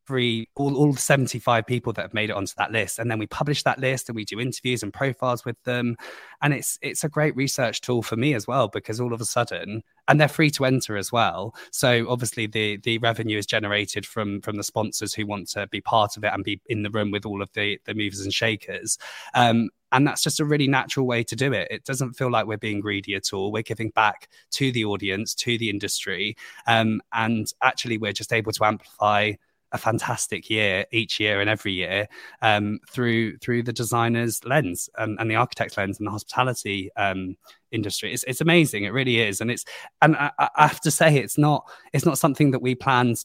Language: English